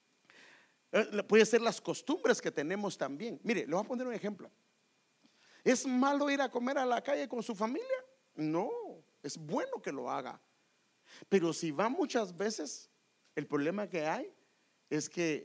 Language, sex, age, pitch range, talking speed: English, male, 50-69, 160-240 Hz, 165 wpm